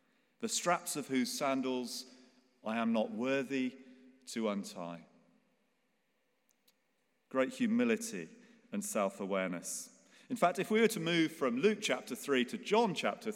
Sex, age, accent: male, 40-59, British